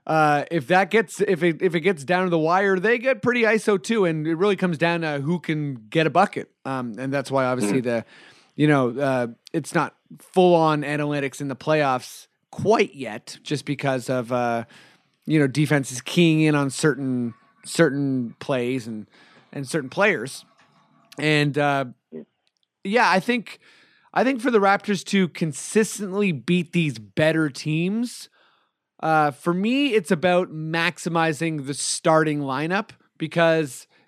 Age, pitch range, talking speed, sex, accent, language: 30-49, 145-175 Hz, 160 wpm, male, American, English